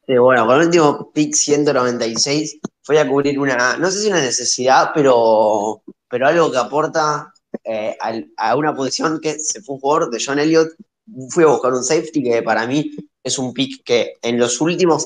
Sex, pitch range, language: male, 120-150 Hz, Spanish